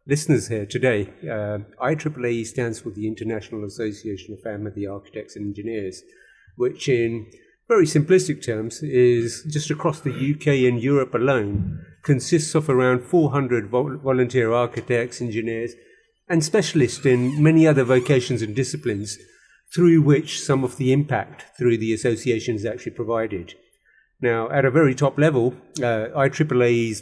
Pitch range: 120-145 Hz